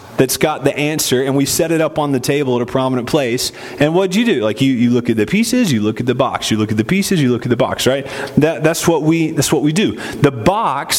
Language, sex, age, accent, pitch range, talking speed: English, male, 30-49, American, 130-165 Hz, 290 wpm